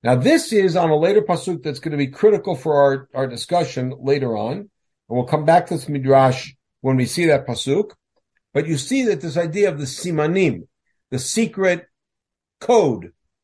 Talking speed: 190 wpm